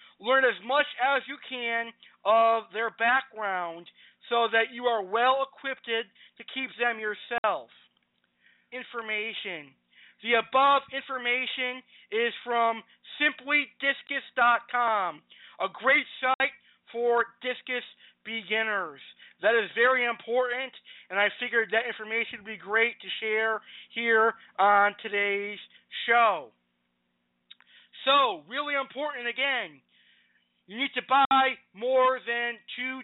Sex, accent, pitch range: male, American, 215-270 Hz